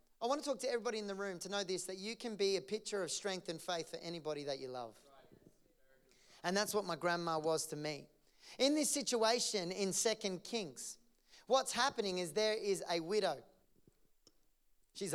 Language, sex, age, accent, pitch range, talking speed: English, male, 30-49, Australian, 195-235 Hz, 195 wpm